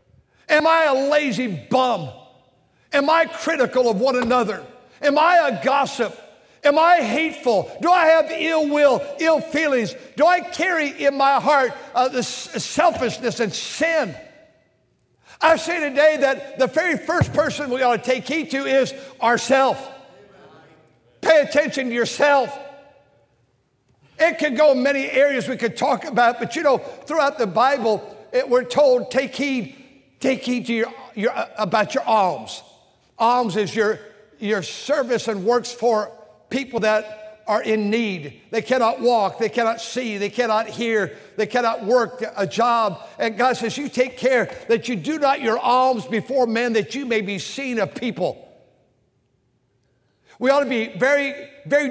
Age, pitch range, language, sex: 60-79, 225-280 Hz, English, male